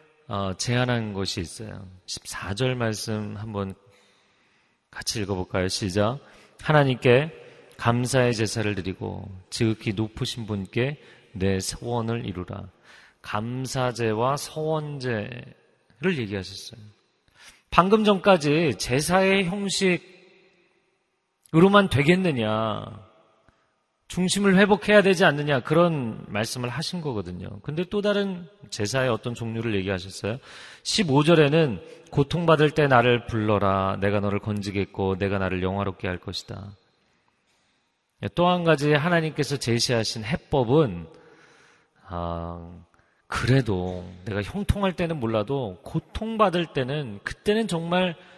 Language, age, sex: Korean, 40-59, male